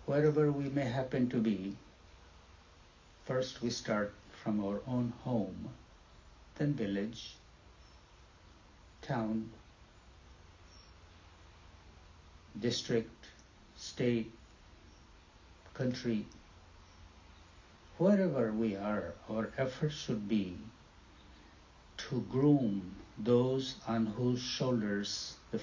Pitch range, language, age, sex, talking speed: 80-115 Hz, English, 60-79, male, 75 wpm